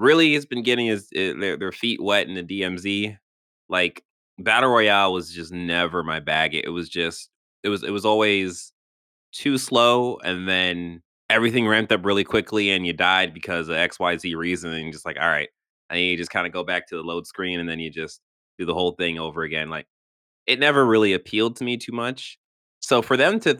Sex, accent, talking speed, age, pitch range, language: male, American, 210 wpm, 20-39, 90-135 Hz, English